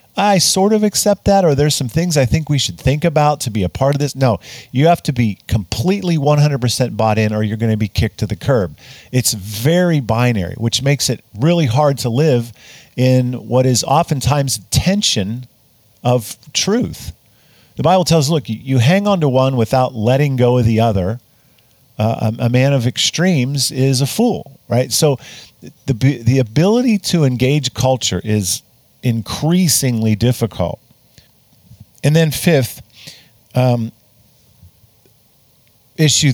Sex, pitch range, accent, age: male, 110-145 Hz, American, 50-69